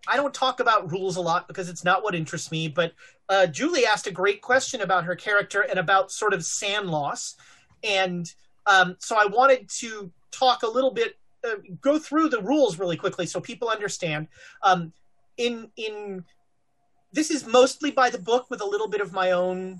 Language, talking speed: English, 195 wpm